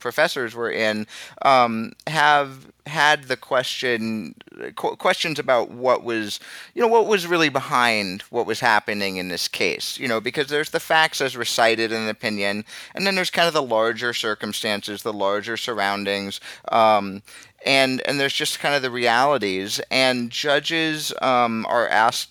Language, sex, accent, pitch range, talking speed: English, male, American, 105-135 Hz, 160 wpm